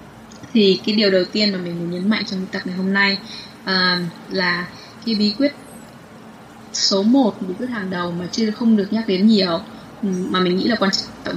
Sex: female